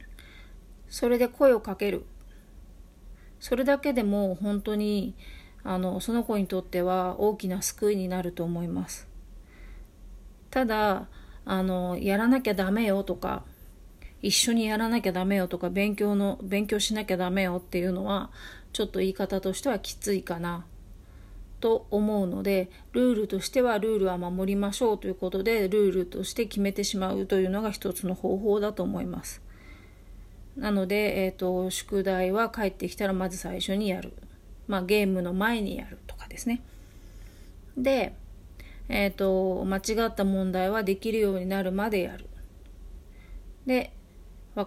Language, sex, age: Japanese, female, 40-59